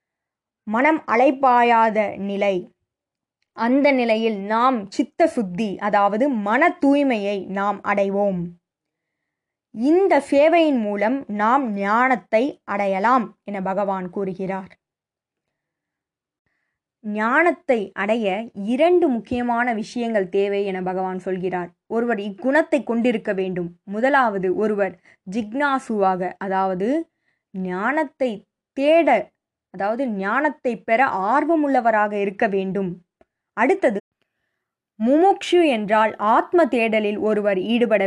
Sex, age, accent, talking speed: female, 20-39, native, 85 wpm